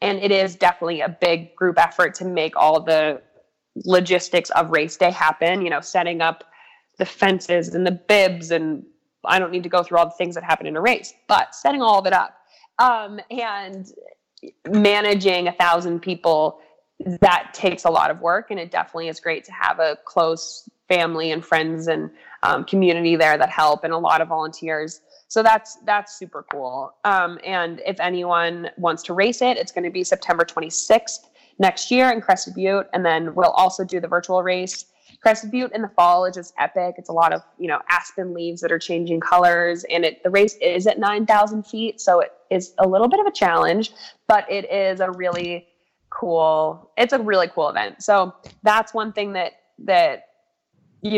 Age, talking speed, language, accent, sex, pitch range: 20-39, 200 wpm, English, American, female, 170-200 Hz